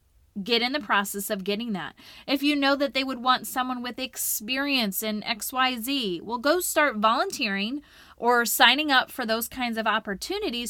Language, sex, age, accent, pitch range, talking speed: English, female, 30-49, American, 215-275 Hz, 175 wpm